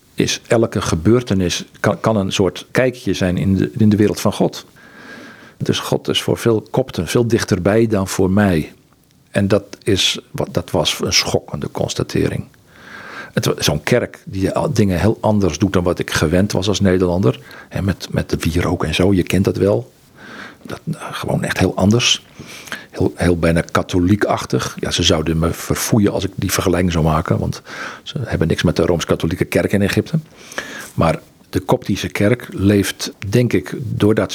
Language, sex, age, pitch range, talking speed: Dutch, male, 50-69, 90-115 Hz, 180 wpm